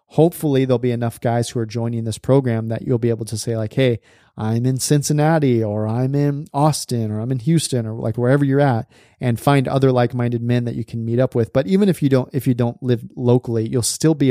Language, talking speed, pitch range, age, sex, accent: English, 245 wpm, 115-135 Hz, 30-49, male, American